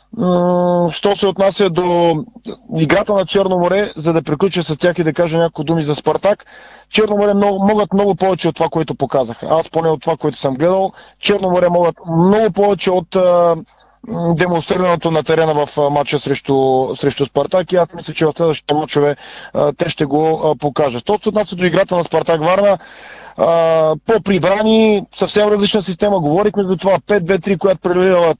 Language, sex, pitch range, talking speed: Bulgarian, male, 155-195 Hz, 165 wpm